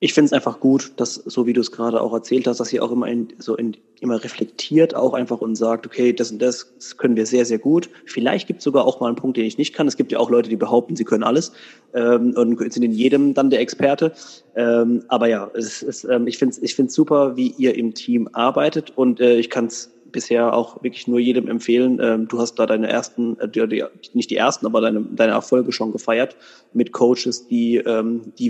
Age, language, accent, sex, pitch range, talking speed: 30-49, German, German, male, 115-135 Hz, 235 wpm